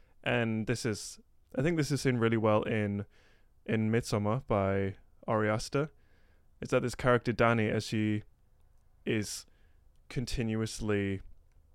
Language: English